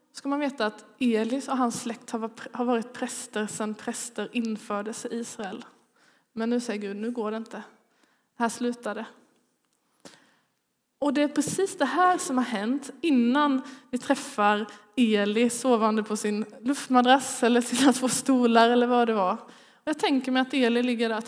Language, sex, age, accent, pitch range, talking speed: Swedish, female, 20-39, native, 230-275 Hz, 175 wpm